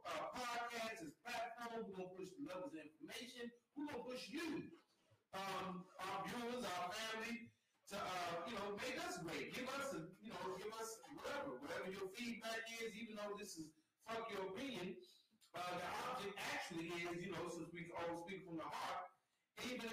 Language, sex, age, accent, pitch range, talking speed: English, male, 40-59, American, 175-230 Hz, 195 wpm